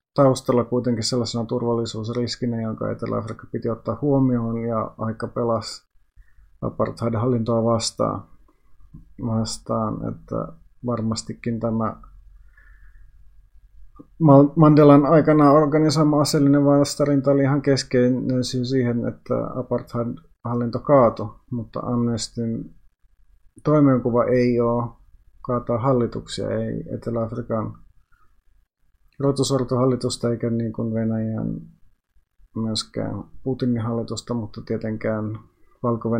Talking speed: 85 wpm